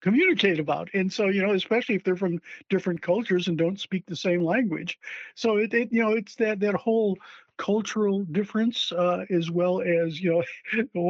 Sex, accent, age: male, American, 50-69